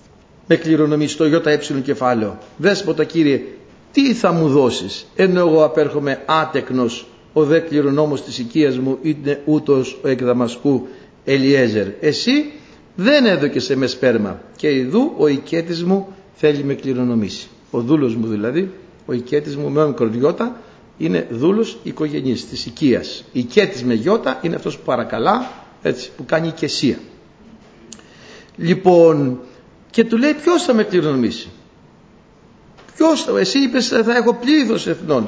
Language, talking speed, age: Greek, 140 wpm, 60-79